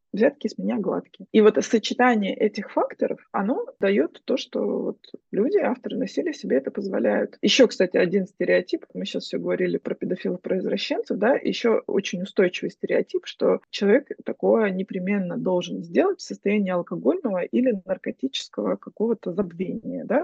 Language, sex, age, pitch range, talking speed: Russian, female, 20-39, 195-255 Hz, 145 wpm